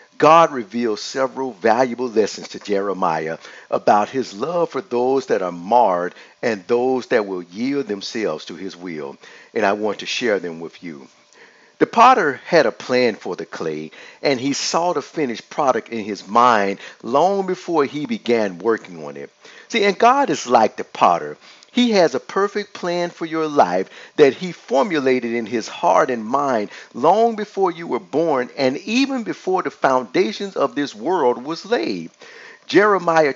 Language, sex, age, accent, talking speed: English, male, 50-69, American, 170 wpm